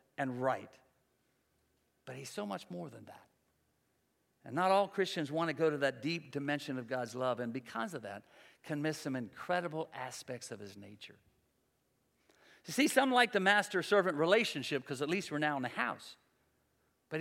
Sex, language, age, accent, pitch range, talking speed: male, English, 50-69, American, 145-205 Hz, 180 wpm